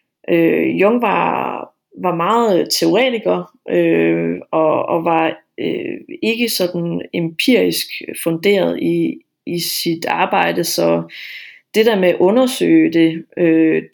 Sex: female